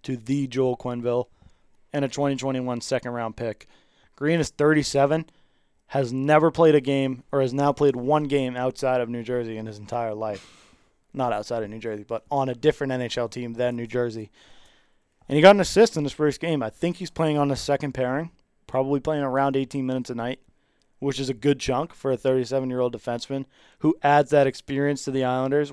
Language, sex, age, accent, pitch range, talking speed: English, male, 20-39, American, 125-145 Hz, 200 wpm